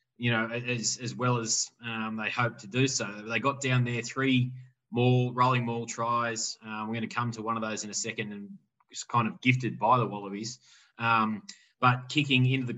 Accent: Australian